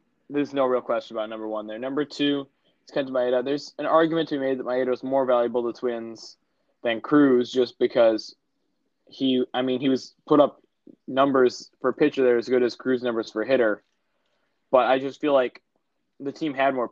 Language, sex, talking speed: English, male, 205 wpm